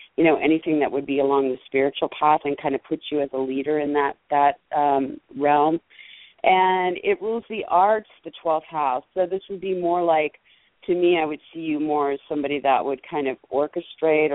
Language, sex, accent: English, female, American